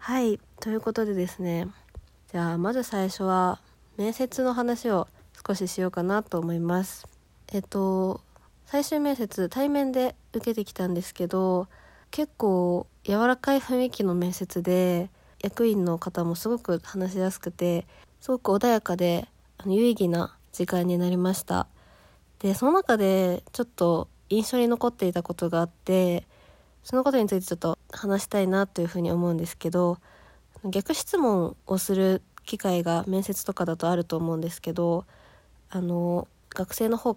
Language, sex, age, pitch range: Japanese, female, 20-39, 175-225 Hz